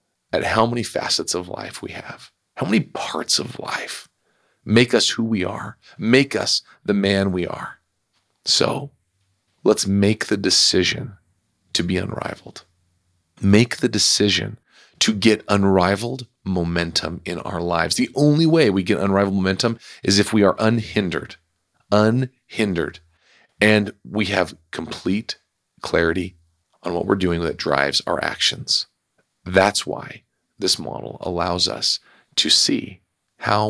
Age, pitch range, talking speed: 40-59, 90-115 Hz, 135 wpm